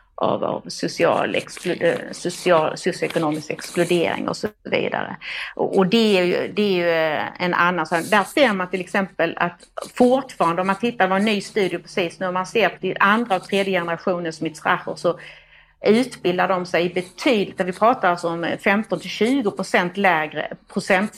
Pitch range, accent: 170-195 Hz, native